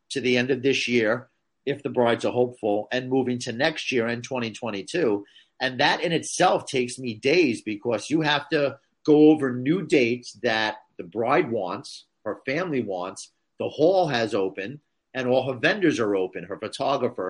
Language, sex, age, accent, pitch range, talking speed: English, male, 50-69, American, 115-140 Hz, 180 wpm